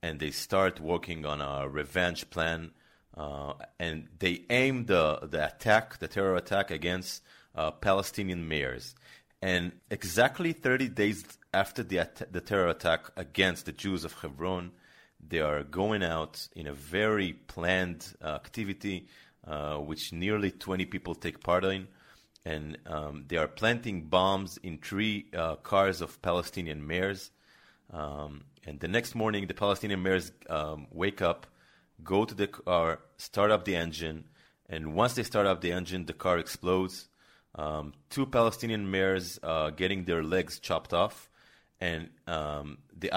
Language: English